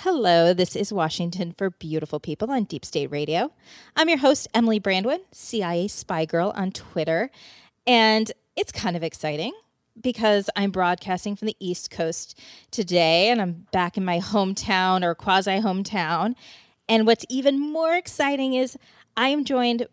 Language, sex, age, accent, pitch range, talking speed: English, female, 30-49, American, 180-235 Hz, 155 wpm